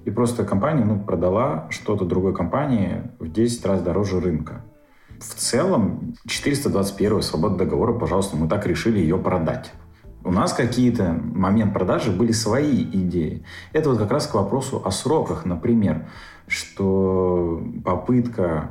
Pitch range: 90-115 Hz